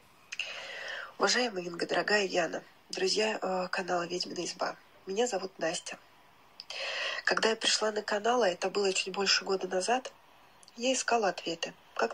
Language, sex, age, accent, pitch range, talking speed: Russian, female, 20-39, native, 190-220 Hz, 130 wpm